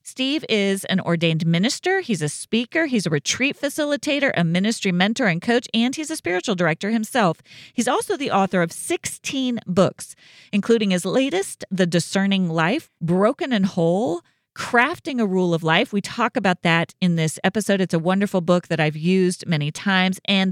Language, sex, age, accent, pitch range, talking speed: English, female, 40-59, American, 180-245 Hz, 180 wpm